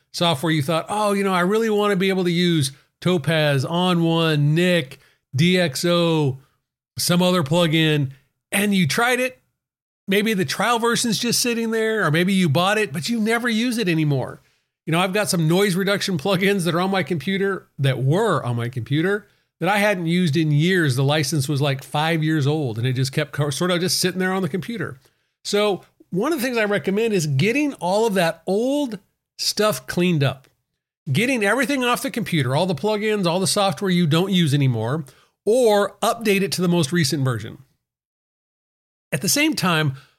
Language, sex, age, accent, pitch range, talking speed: English, male, 40-59, American, 155-200 Hz, 195 wpm